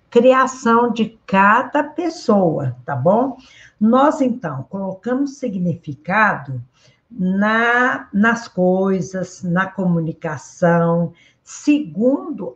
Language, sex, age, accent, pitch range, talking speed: Portuguese, female, 60-79, Brazilian, 170-240 Hz, 70 wpm